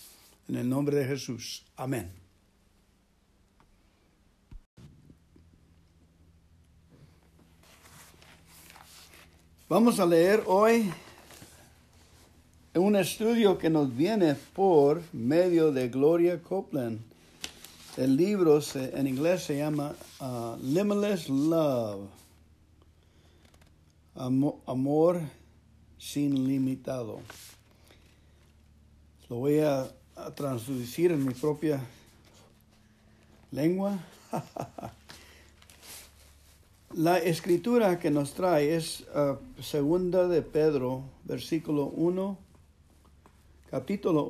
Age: 60-79